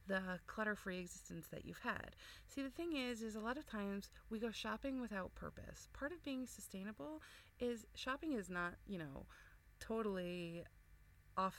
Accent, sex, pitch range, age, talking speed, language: American, female, 170-235 Hz, 30-49, 165 wpm, English